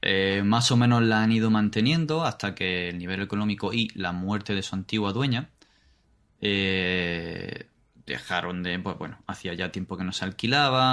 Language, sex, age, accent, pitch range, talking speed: Spanish, male, 20-39, Spanish, 95-110 Hz, 175 wpm